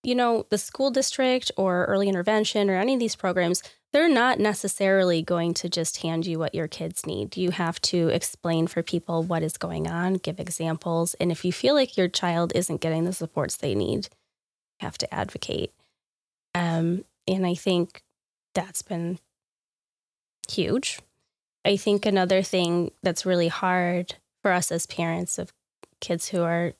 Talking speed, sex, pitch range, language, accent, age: 170 wpm, female, 175-200 Hz, English, American, 20-39